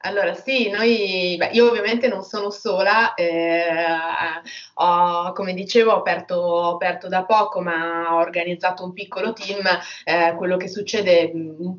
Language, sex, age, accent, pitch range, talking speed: Italian, female, 20-39, native, 165-185 Hz, 130 wpm